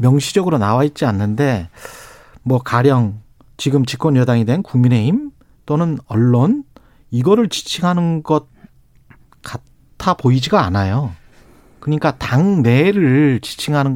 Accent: native